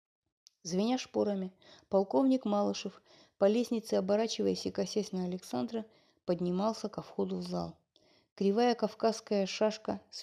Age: 30-49